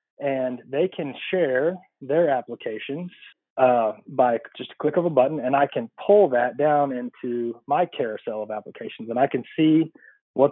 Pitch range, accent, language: 125-150 Hz, American, English